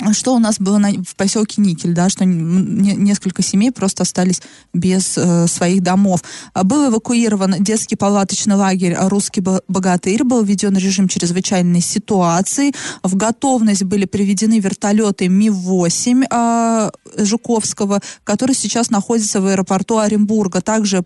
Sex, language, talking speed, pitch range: female, Russian, 120 wpm, 190-230 Hz